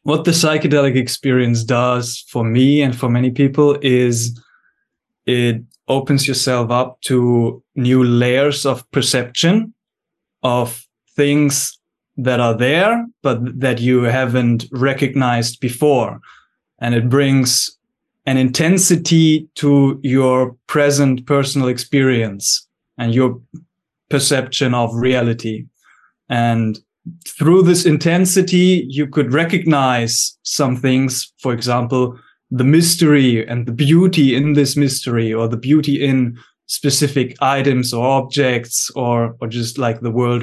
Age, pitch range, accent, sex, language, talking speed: 20-39, 120-145 Hz, German, male, English, 120 wpm